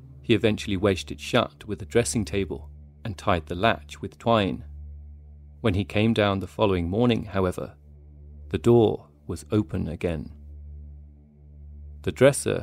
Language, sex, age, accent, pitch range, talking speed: English, male, 30-49, British, 85-105 Hz, 145 wpm